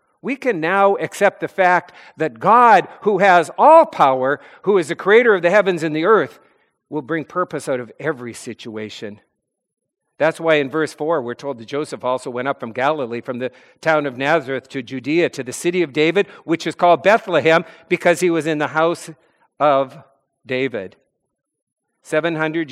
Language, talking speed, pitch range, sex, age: English, 180 wpm, 150-210 Hz, male, 50-69